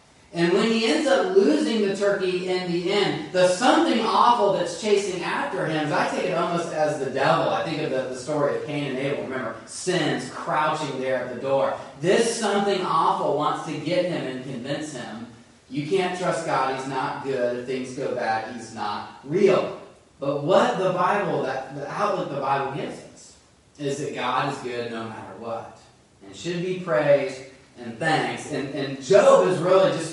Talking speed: 195 wpm